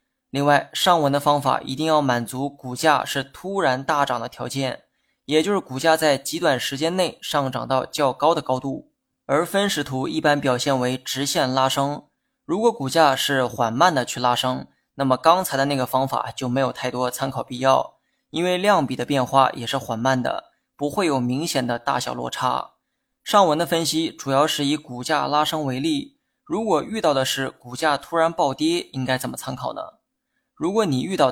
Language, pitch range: Chinese, 130-160 Hz